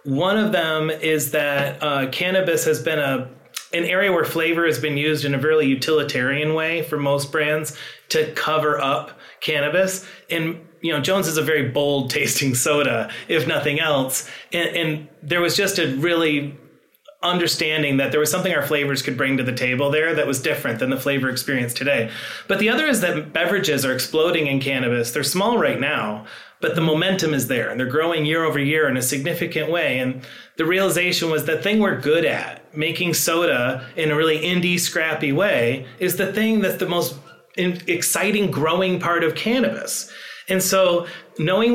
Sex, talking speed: male, 185 wpm